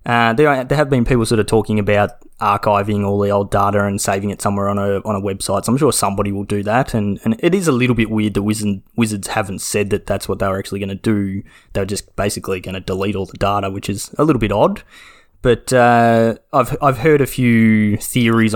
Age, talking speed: 20-39, 240 wpm